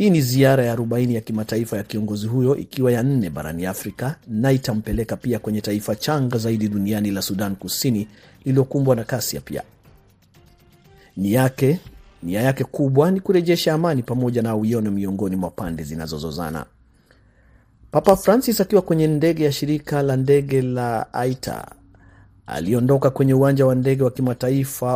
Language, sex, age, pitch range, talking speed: Swahili, male, 40-59, 110-135 Hz, 155 wpm